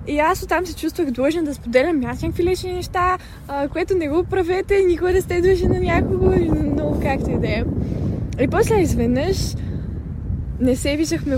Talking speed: 175 wpm